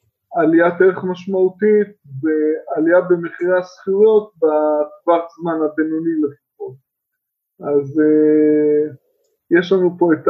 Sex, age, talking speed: male, 20-39, 85 wpm